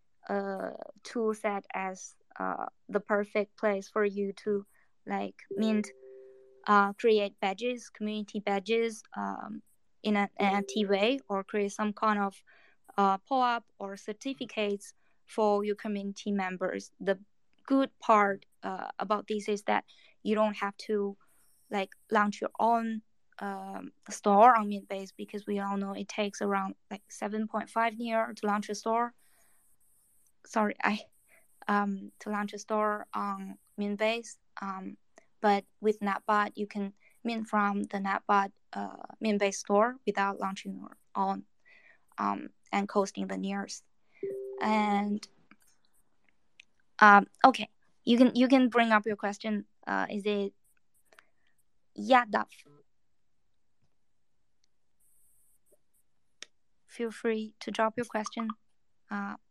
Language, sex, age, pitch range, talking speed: English, female, 20-39, 200-220 Hz, 130 wpm